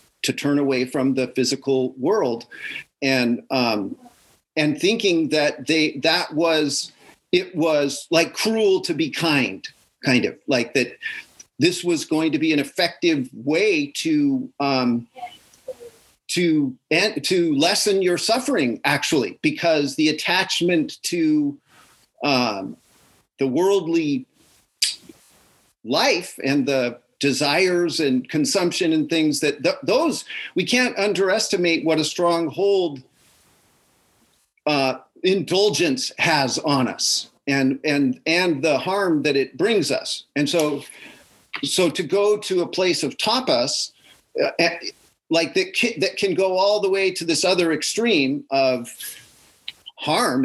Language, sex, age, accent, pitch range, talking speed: English, male, 40-59, American, 145-225 Hz, 125 wpm